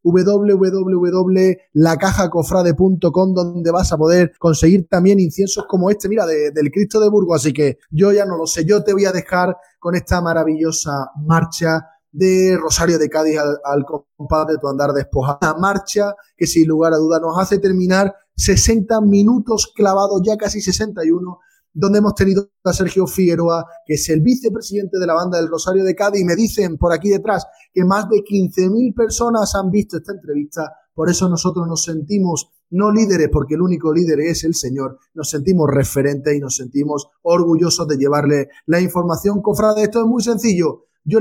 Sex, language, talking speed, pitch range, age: male, Spanish, 175 wpm, 155-195 Hz, 20-39